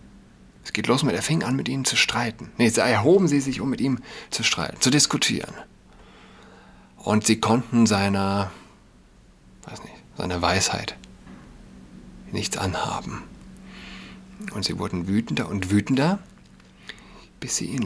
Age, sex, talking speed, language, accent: 50-69, male, 140 wpm, German, German